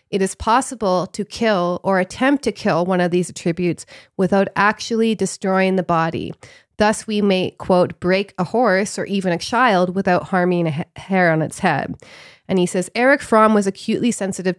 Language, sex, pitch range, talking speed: English, female, 170-200 Hz, 180 wpm